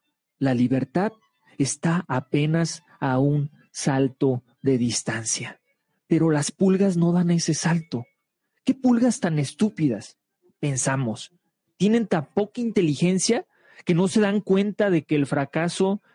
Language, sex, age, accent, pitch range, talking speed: Spanish, male, 40-59, Mexican, 135-180 Hz, 125 wpm